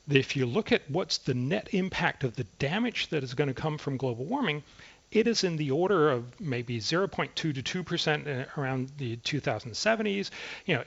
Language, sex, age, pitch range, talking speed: English, male, 40-59, 140-205 Hz, 190 wpm